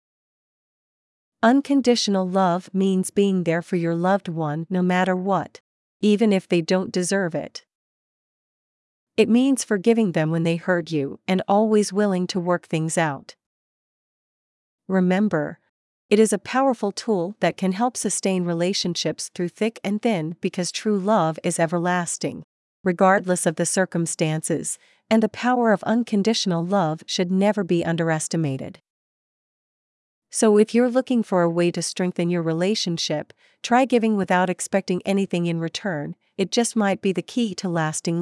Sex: female